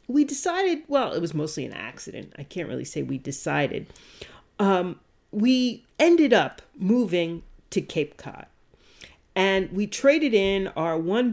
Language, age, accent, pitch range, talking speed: English, 40-59, American, 180-255 Hz, 150 wpm